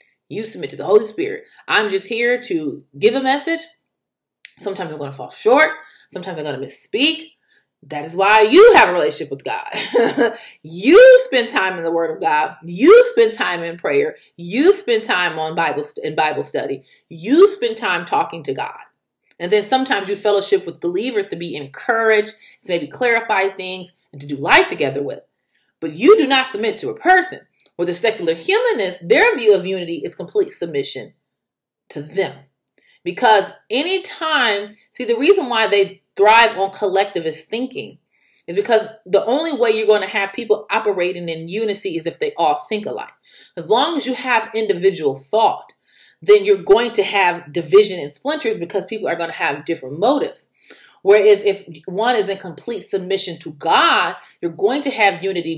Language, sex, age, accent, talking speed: English, female, 30-49, American, 180 wpm